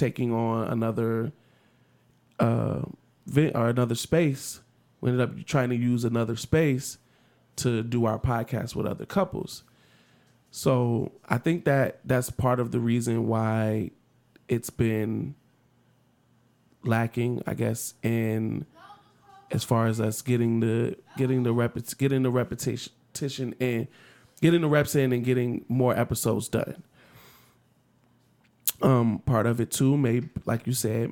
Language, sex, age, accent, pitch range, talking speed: English, male, 20-39, American, 115-130 Hz, 135 wpm